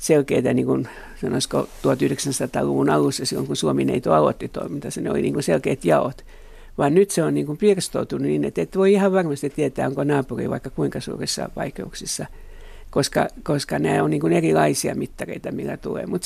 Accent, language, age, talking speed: native, Finnish, 60-79, 170 wpm